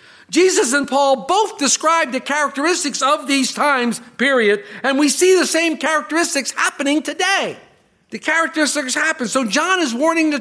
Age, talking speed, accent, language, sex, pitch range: 50-69, 155 wpm, American, English, male, 210-290 Hz